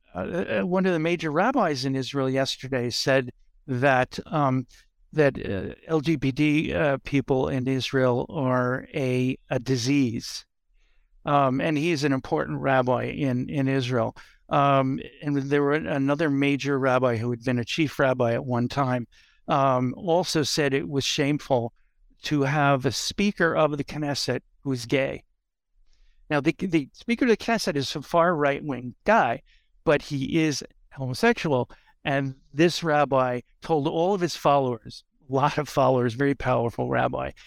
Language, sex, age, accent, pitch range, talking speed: English, male, 60-79, American, 130-160 Hz, 155 wpm